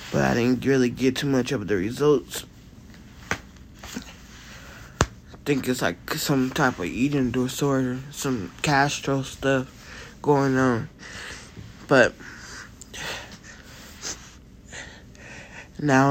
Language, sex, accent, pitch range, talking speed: English, male, American, 125-150 Hz, 95 wpm